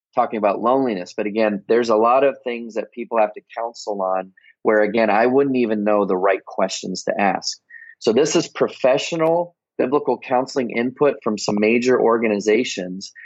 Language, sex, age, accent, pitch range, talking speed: English, male, 30-49, American, 110-155 Hz, 170 wpm